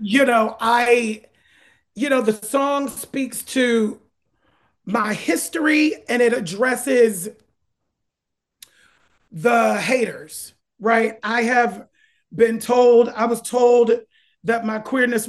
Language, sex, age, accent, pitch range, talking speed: English, male, 40-59, American, 210-245 Hz, 105 wpm